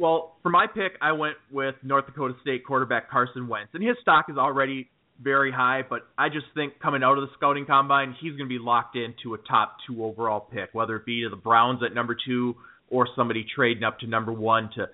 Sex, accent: male, American